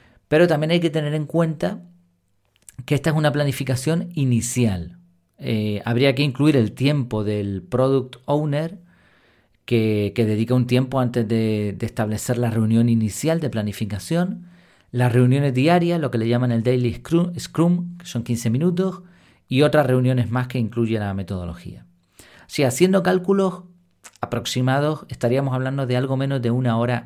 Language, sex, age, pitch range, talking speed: Spanish, male, 40-59, 110-150 Hz, 160 wpm